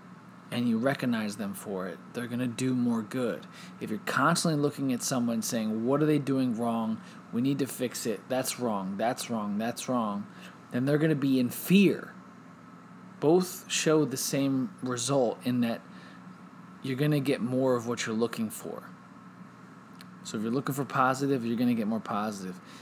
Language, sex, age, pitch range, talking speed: English, male, 20-39, 115-150 Hz, 185 wpm